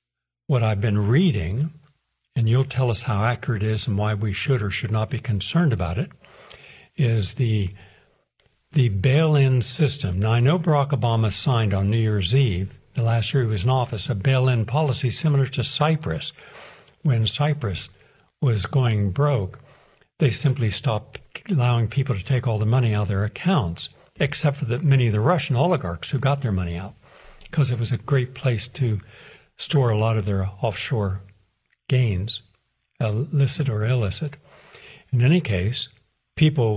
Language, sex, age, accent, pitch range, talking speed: English, male, 60-79, American, 110-140 Hz, 170 wpm